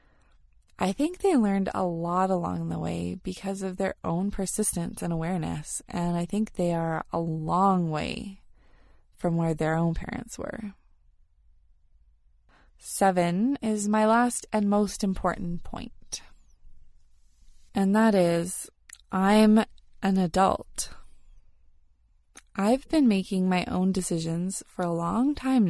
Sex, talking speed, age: female, 125 wpm, 20-39